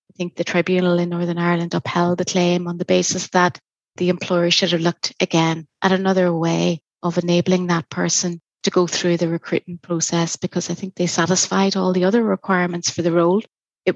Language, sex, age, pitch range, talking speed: English, female, 30-49, 170-190 Hz, 200 wpm